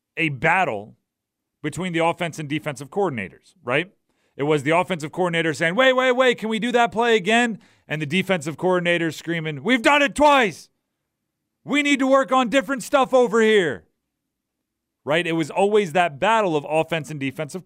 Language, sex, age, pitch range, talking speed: English, male, 40-59, 145-190 Hz, 175 wpm